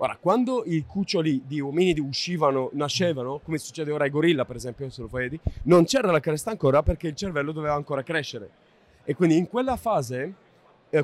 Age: 30-49